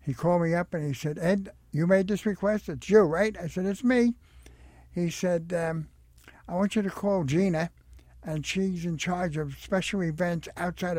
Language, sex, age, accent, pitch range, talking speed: English, male, 60-79, American, 130-180 Hz, 195 wpm